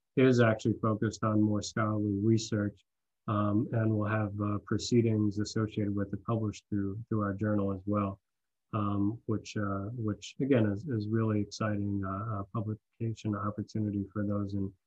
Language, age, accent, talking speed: English, 30-49, American, 155 wpm